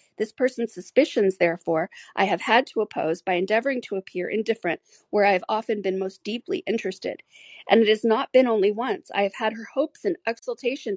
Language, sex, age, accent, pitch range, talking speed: English, female, 40-59, American, 190-225 Hz, 195 wpm